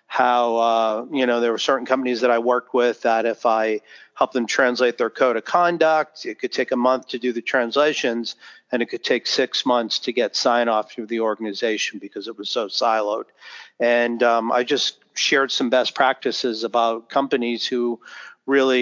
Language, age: English, 40-59